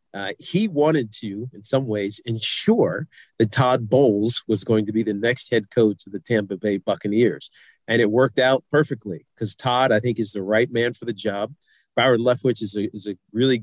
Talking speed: 205 wpm